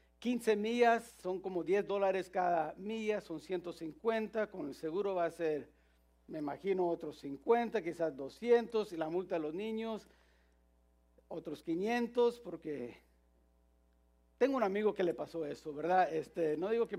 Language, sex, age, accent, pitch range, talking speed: English, male, 50-69, Mexican, 160-210 Hz, 150 wpm